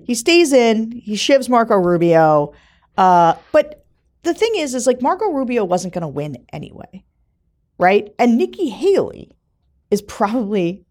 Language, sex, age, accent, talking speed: English, female, 40-59, American, 150 wpm